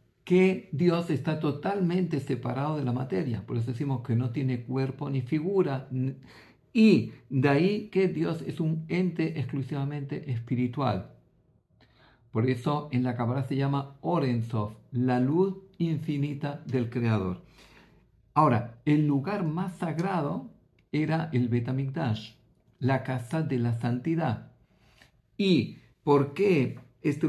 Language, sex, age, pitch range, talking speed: Greek, male, 50-69, 125-160 Hz, 125 wpm